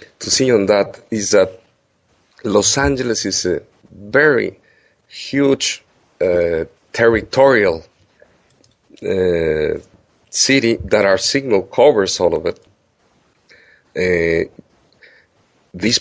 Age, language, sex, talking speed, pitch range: 50-69, English, male, 95 wpm, 95-130 Hz